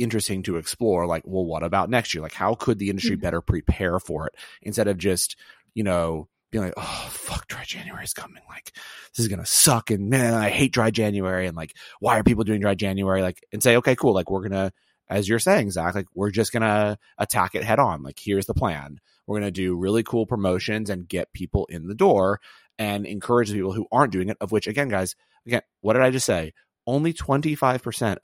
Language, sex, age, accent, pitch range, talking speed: English, male, 30-49, American, 95-125 Hz, 230 wpm